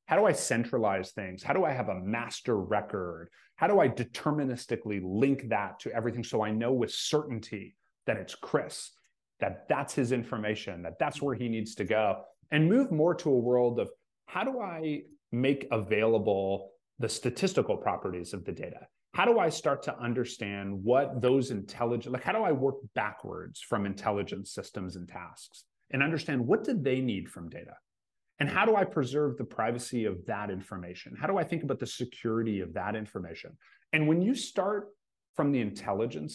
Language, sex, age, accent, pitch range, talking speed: English, male, 30-49, American, 110-145 Hz, 185 wpm